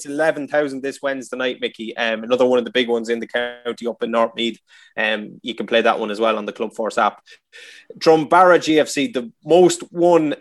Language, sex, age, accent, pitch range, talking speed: English, male, 20-39, Irish, 125-155 Hz, 220 wpm